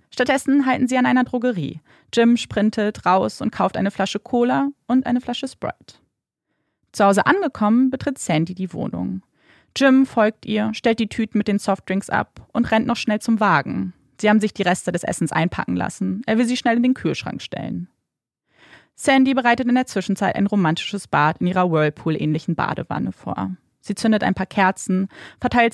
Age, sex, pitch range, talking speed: 30-49, female, 175-240 Hz, 180 wpm